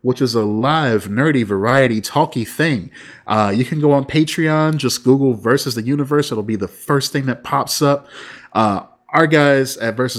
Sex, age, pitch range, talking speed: male, 30-49, 115-145 Hz, 190 wpm